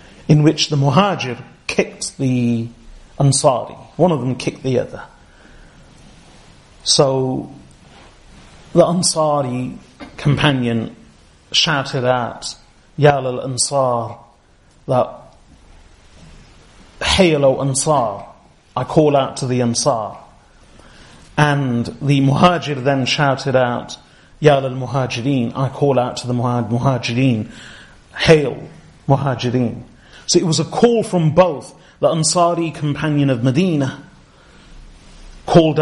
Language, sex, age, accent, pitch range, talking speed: English, male, 30-49, British, 125-155 Hz, 105 wpm